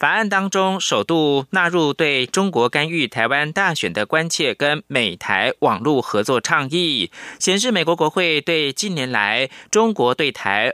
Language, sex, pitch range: Chinese, male, 145-190 Hz